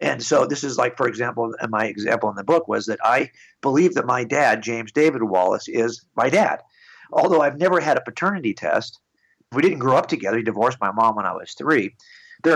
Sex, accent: male, American